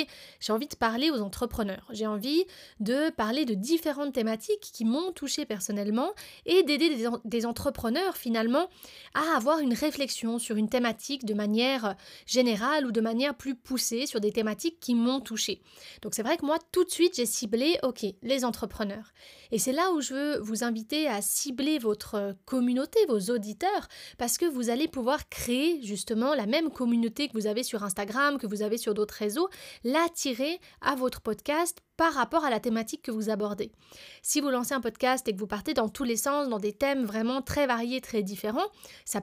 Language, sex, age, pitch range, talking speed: French, female, 20-39, 220-290 Hz, 190 wpm